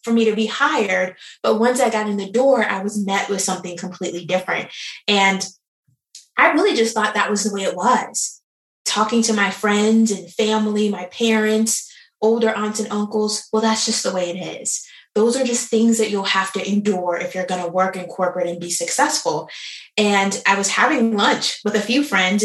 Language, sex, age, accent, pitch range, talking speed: English, female, 20-39, American, 190-255 Hz, 205 wpm